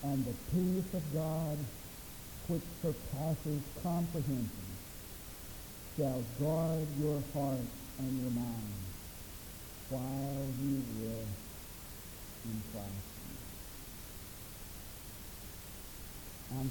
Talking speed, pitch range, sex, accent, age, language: 75 wpm, 110-170 Hz, male, American, 60-79, English